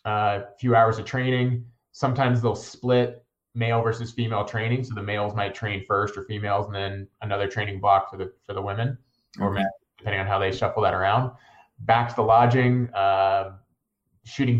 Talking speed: 190 wpm